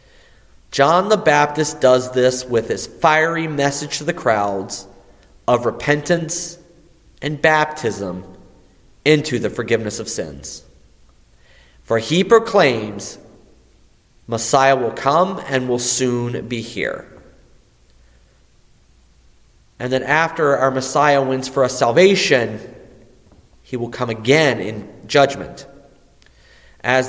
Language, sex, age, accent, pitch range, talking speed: English, male, 30-49, American, 110-155 Hz, 105 wpm